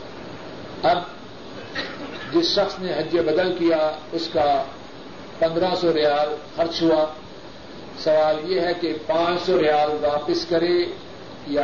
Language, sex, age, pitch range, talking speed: Urdu, male, 50-69, 165-205 Hz, 125 wpm